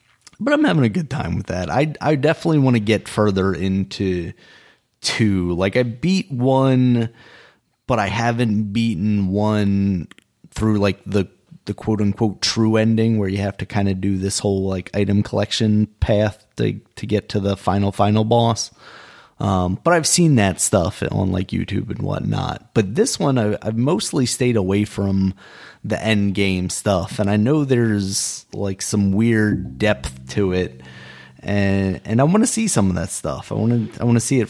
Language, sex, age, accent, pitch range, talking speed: English, male, 30-49, American, 95-115 Hz, 185 wpm